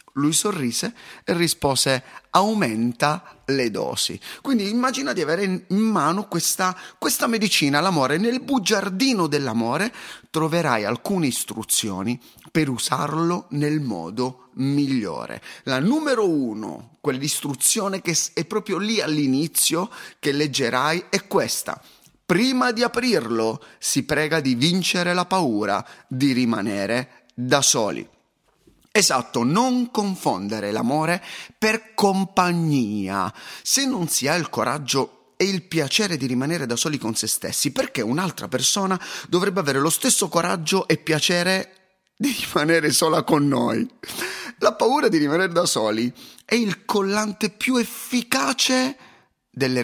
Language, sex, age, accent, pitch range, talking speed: Italian, male, 30-49, native, 130-200 Hz, 125 wpm